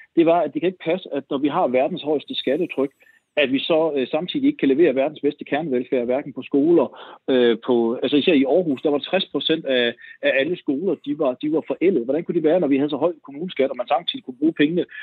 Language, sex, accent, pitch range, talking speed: Danish, male, native, 145-205 Hz, 250 wpm